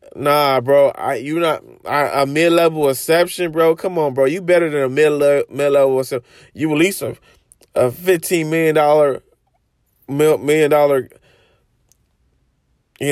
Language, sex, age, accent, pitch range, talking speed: English, male, 20-39, American, 140-175 Hz, 140 wpm